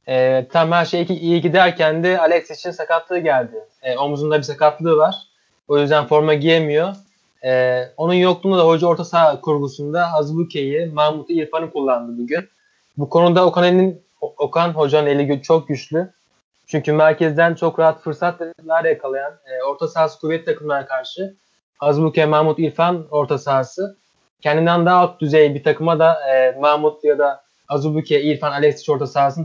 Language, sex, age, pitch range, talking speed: Turkish, male, 20-39, 150-170 Hz, 150 wpm